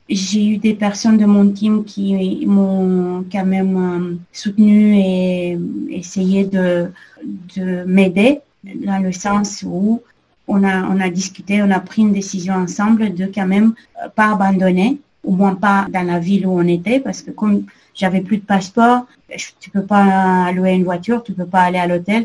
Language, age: French, 30-49